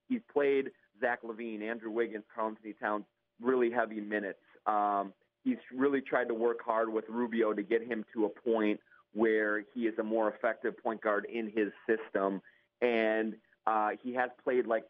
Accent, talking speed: American, 175 wpm